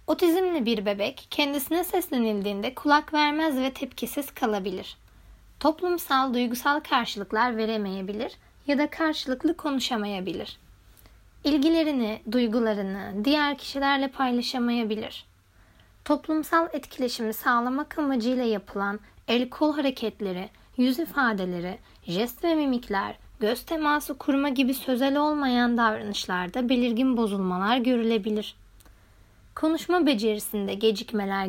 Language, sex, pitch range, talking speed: Turkish, female, 205-290 Hz, 95 wpm